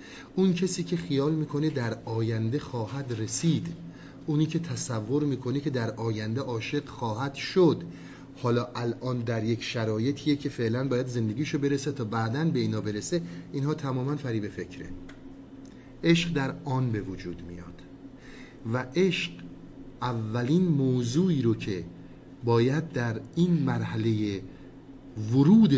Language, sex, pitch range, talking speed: Persian, male, 105-135 Hz, 130 wpm